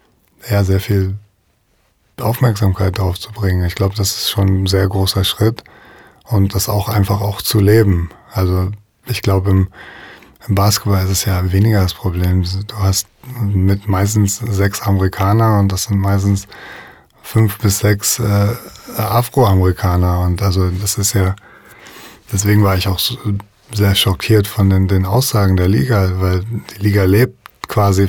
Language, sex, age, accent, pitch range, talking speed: German, male, 20-39, German, 95-110 Hz, 145 wpm